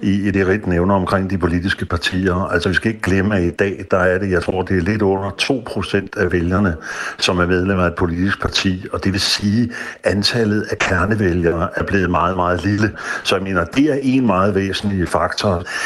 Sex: male